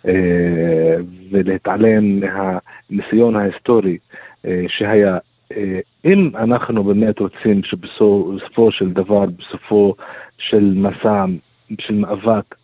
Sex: male